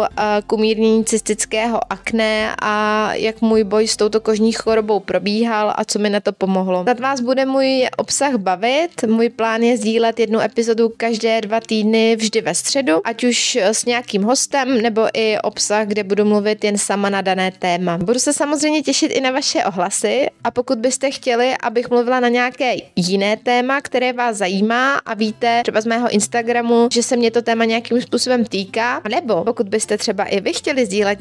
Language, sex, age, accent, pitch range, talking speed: Czech, female, 20-39, native, 210-235 Hz, 185 wpm